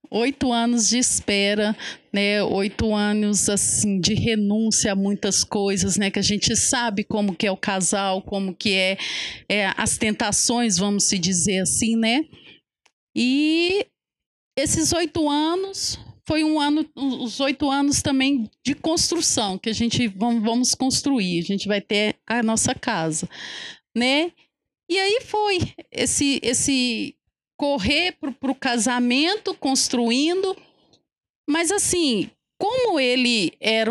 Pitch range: 210-295 Hz